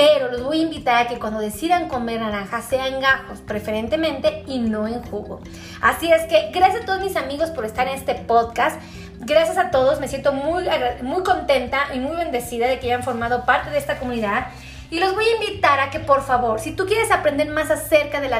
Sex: female